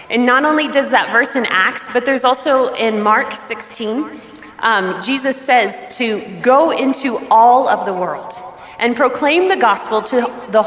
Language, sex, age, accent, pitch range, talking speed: English, female, 30-49, American, 210-275 Hz, 170 wpm